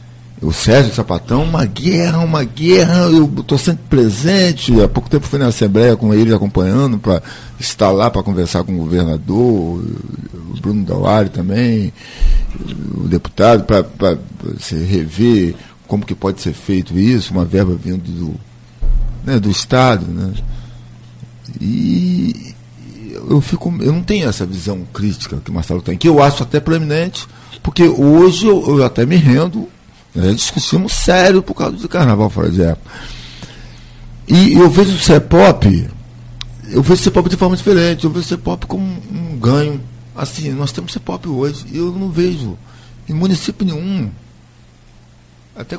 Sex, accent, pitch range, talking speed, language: male, Brazilian, 95-155 Hz, 155 wpm, Portuguese